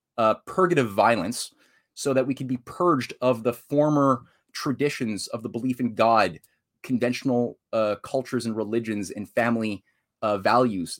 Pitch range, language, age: 115-145 Hz, English, 20-39